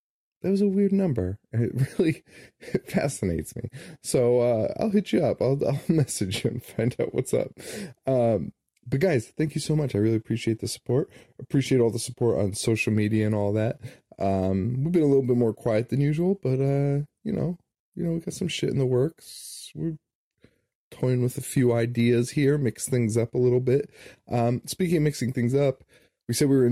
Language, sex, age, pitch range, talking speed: English, male, 20-39, 110-135 Hz, 210 wpm